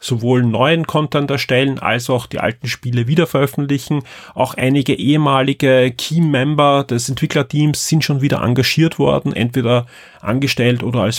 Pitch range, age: 120-145 Hz, 30-49